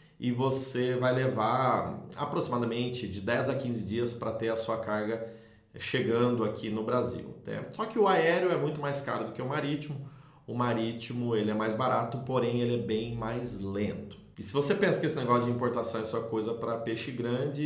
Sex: male